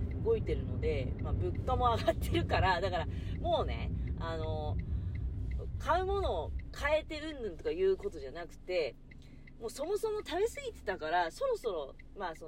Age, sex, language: 40-59, female, Japanese